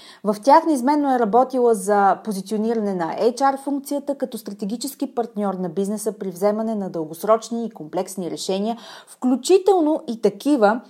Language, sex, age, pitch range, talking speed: Bulgarian, female, 30-49, 195-265 Hz, 130 wpm